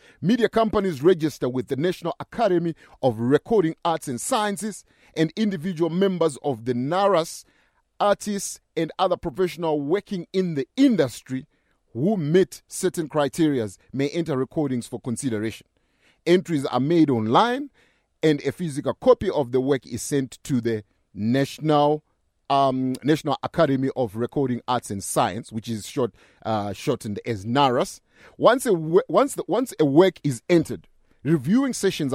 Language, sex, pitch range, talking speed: English, male, 125-170 Hz, 145 wpm